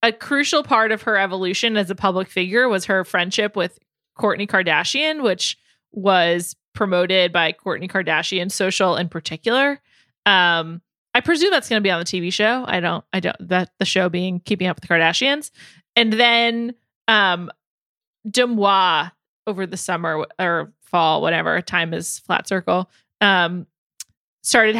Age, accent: 20-39, American